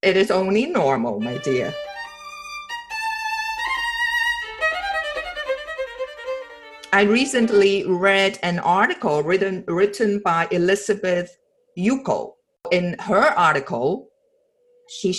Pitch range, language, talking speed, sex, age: 180-280 Hz, English, 80 wpm, female, 50-69